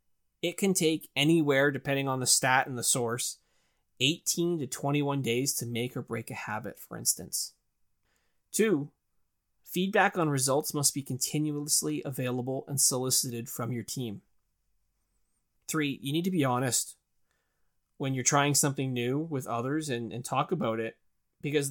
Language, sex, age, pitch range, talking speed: English, male, 20-39, 120-150 Hz, 150 wpm